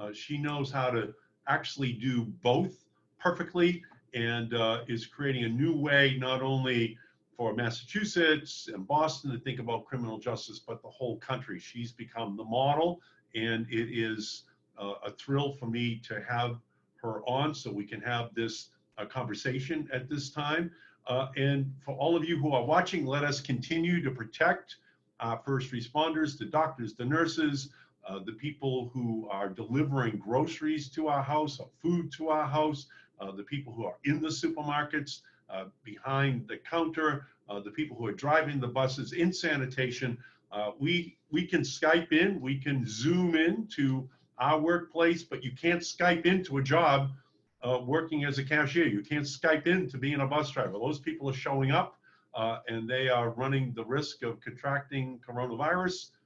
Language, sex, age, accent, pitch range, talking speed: English, male, 50-69, American, 120-155 Hz, 175 wpm